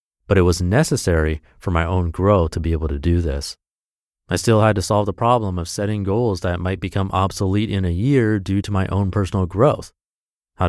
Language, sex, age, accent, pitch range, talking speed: English, male, 30-49, American, 85-115 Hz, 215 wpm